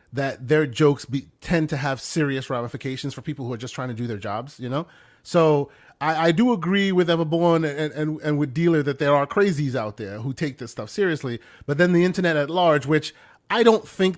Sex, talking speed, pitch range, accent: male, 230 wpm, 135-170 Hz, American